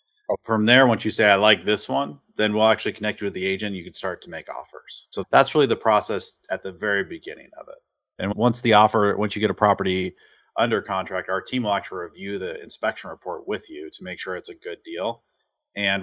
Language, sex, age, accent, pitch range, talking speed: English, male, 30-49, American, 95-130 Hz, 235 wpm